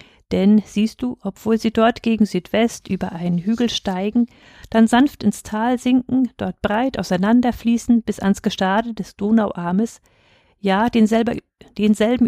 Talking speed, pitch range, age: 135 wpm, 195-235 Hz, 50-69